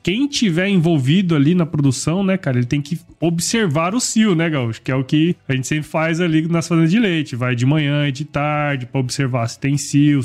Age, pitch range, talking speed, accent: 20-39, 145-190 Hz, 235 wpm, Brazilian